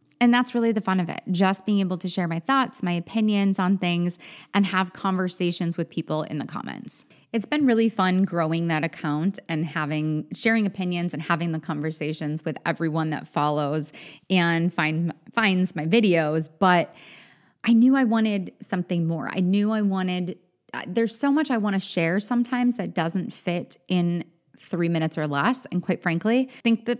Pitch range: 165-205 Hz